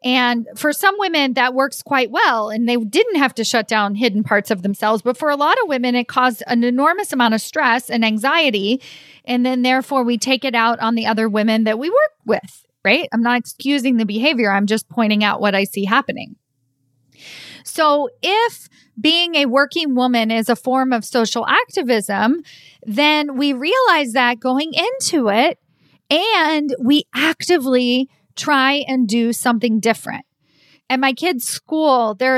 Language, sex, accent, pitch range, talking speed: English, female, American, 230-275 Hz, 175 wpm